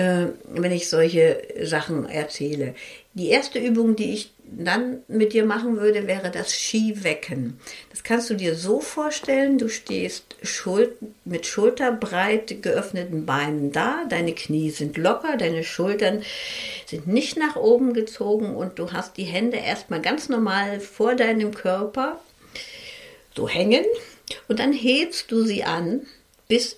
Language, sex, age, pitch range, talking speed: German, female, 60-79, 185-250 Hz, 140 wpm